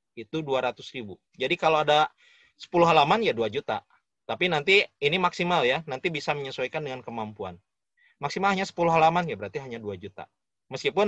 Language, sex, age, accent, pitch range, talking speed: Indonesian, male, 30-49, native, 130-185 Hz, 160 wpm